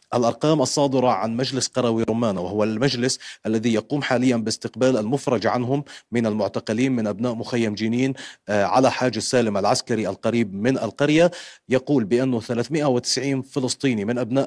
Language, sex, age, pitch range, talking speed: Arabic, male, 30-49, 115-135 Hz, 135 wpm